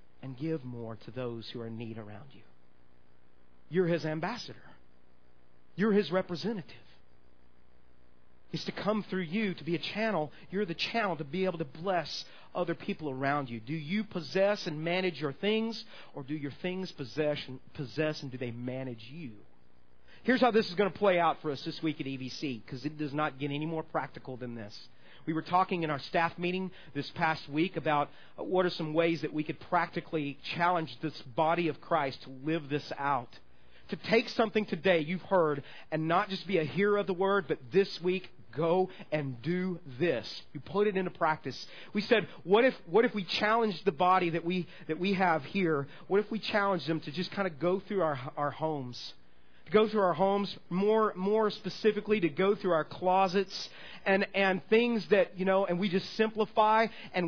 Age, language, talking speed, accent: 40-59, English, 195 wpm, American